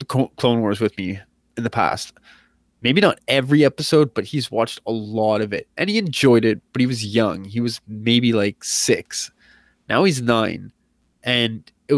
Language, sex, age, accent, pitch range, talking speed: English, male, 20-39, American, 110-140 Hz, 180 wpm